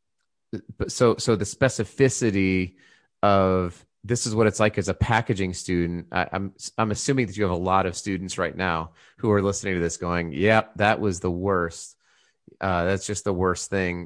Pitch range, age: 90-110 Hz, 30-49